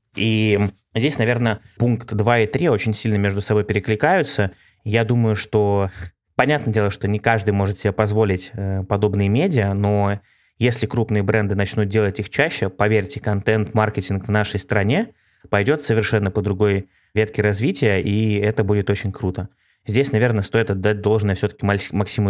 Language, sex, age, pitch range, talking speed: Russian, male, 20-39, 100-110 Hz, 150 wpm